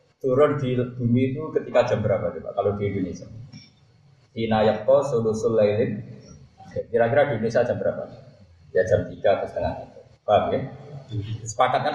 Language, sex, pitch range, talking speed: Malay, male, 115-145 Hz, 140 wpm